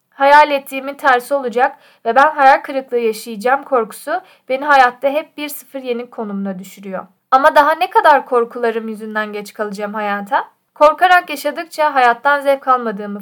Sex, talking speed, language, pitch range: female, 145 wpm, Turkish, 220-285 Hz